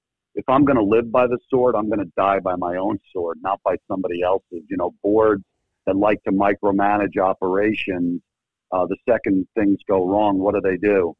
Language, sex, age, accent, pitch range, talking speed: English, male, 50-69, American, 95-110 Hz, 205 wpm